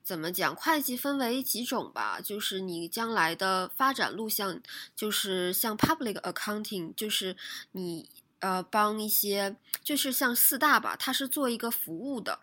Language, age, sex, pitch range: Chinese, 20-39, female, 180-245 Hz